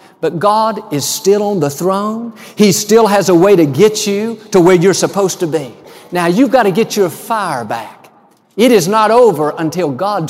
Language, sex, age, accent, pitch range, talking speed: English, male, 50-69, American, 165-225 Hz, 205 wpm